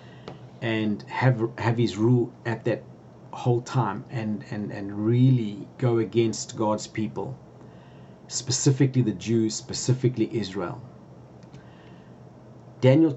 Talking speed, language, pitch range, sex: 105 wpm, English, 105-130 Hz, male